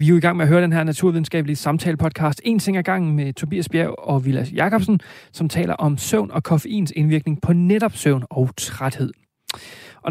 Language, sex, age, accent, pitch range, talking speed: Danish, male, 30-49, native, 140-175 Hz, 200 wpm